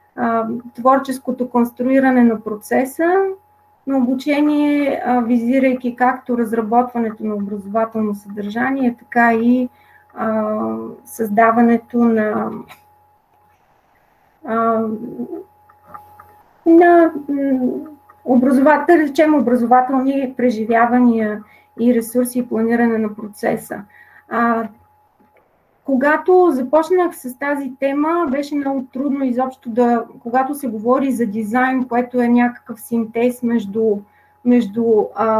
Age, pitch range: 30-49, 225-265 Hz